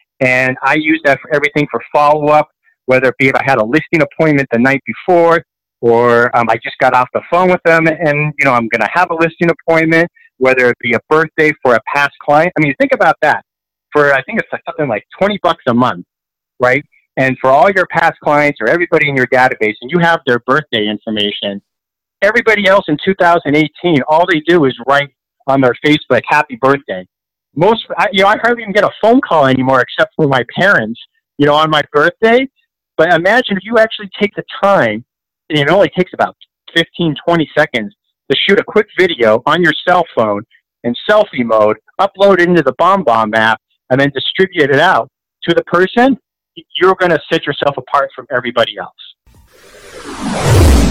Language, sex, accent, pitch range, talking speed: English, male, American, 125-175 Hz, 195 wpm